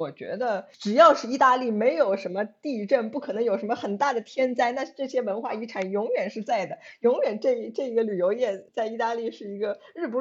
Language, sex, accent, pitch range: Chinese, female, native, 170-225 Hz